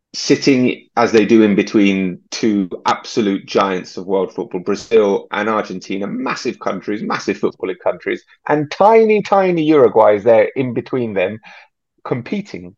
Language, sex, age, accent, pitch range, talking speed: English, male, 30-49, British, 100-150 Hz, 140 wpm